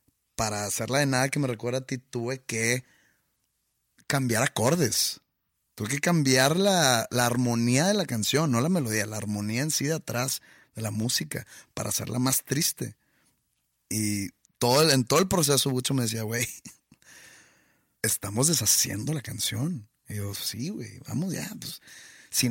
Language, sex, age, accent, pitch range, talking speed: Spanish, male, 30-49, Mexican, 110-135 Hz, 165 wpm